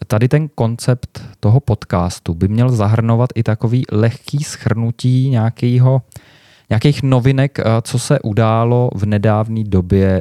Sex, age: male, 20-39